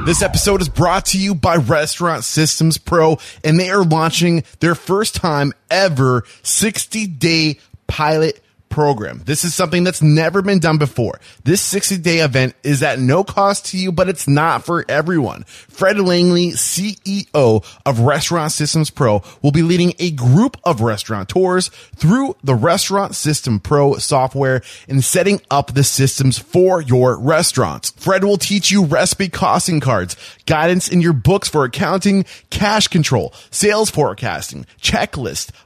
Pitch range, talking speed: 135-185 Hz, 150 wpm